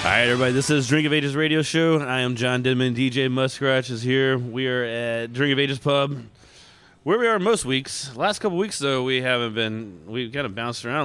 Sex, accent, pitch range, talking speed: male, American, 105-140 Hz, 230 wpm